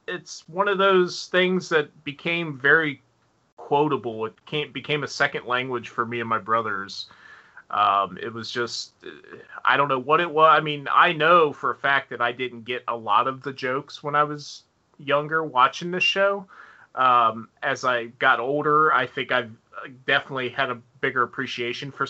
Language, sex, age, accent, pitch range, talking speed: English, male, 30-49, American, 120-145 Hz, 185 wpm